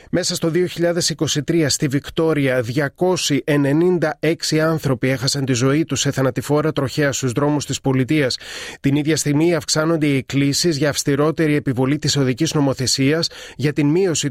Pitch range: 140-160 Hz